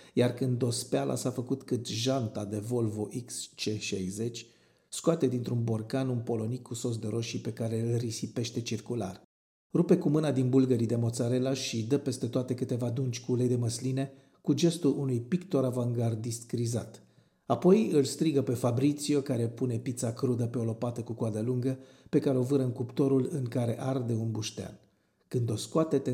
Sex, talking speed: male, 175 wpm